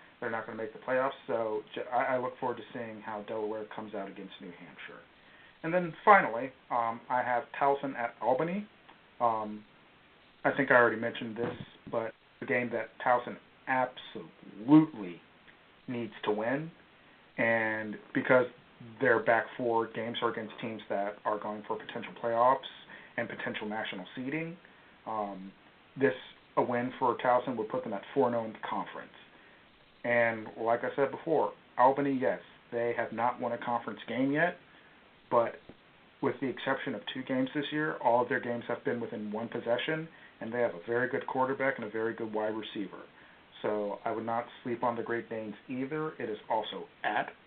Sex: male